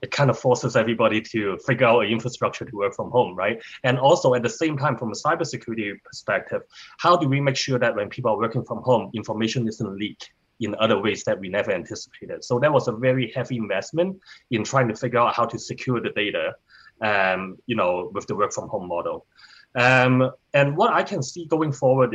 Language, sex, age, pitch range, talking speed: English, male, 20-39, 110-130 Hz, 220 wpm